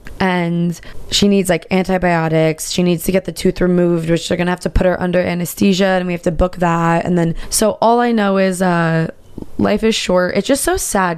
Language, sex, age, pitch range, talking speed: English, female, 20-39, 165-190 Hz, 230 wpm